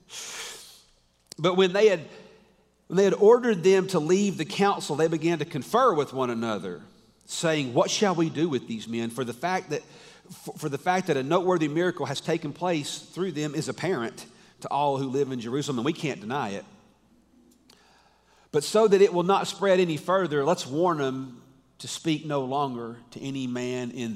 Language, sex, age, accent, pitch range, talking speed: English, male, 40-59, American, 120-170 Hz, 195 wpm